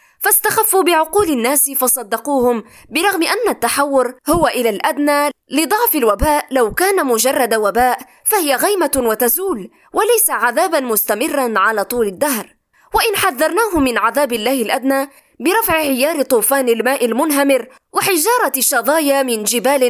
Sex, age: female, 20-39